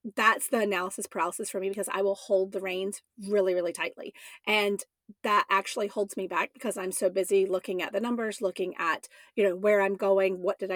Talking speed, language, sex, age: 210 wpm, English, female, 30-49